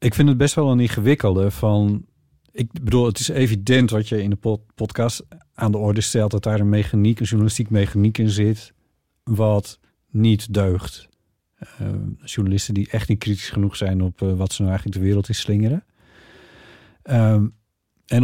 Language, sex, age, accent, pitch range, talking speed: Dutch, male, 50-69, Dutch, 100-115 Hz, 175 wpm